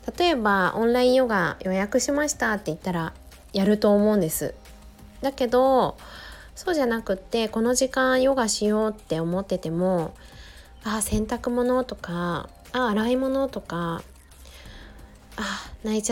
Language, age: Japanese, 20-39